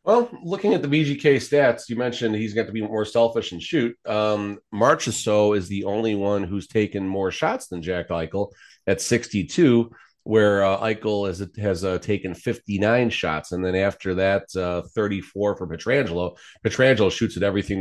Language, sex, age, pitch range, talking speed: English, male, 30-49, 90-110 Hz, 180 wpm